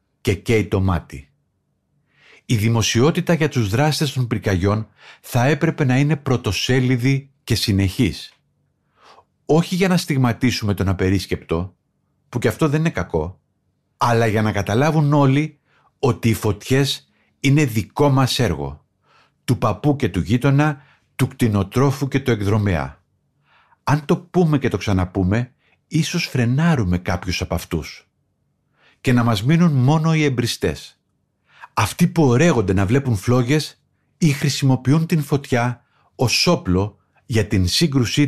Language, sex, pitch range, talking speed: Greek, male, 105-145 Hz, 135 wpm